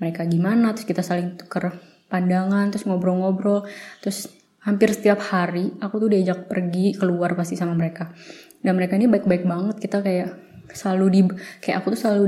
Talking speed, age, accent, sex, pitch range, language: 165 wpm, 20-39, native, female, 185-210 Hz, Indonesian